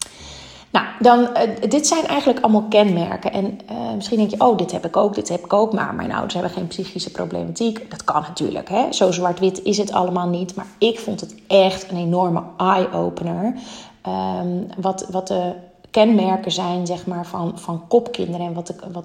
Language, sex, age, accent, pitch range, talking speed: Dutch, female, 30-49, Dutch, 180-210 Hz, 175 wpm